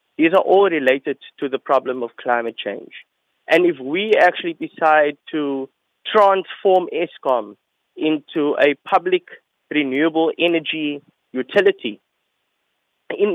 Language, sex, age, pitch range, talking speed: English, male, 20-39, 130-175 Hz, 110 wpm